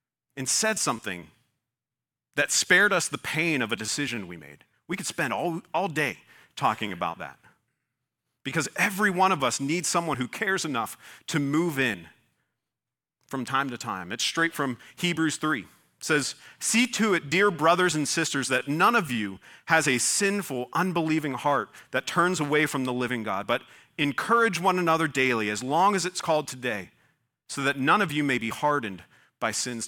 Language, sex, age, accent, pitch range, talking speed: English, male, 40-59, American, 135-185 Hz, 180 wpm